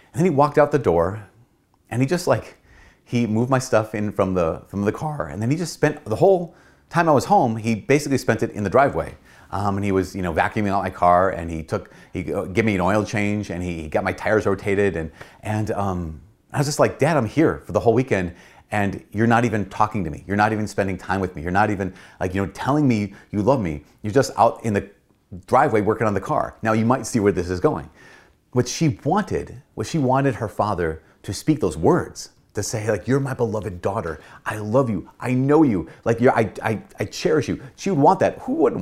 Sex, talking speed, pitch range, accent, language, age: male, 245 wpm, 95-125 Hz, American, English, 30-49